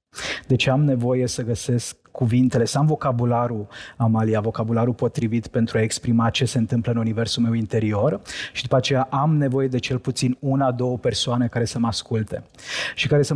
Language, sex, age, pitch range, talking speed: Romanian, male, 20-39, 120-135 Hz, 180 wpm